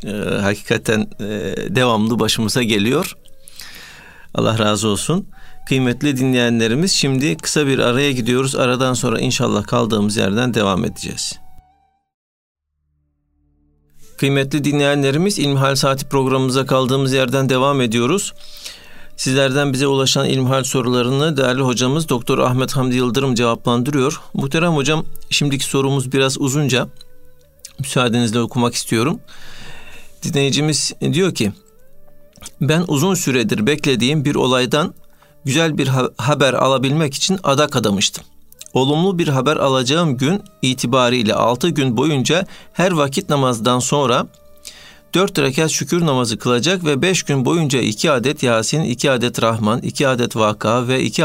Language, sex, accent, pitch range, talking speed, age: Turkish, male, native, 120-150 Hz, 115 wpm, 50-69